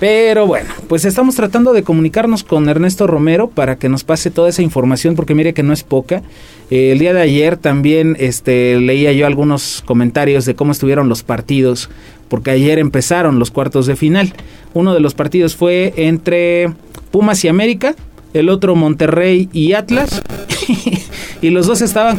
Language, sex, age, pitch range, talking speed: Spanish, male, 30-49, 135-175 Hz, 175 wpm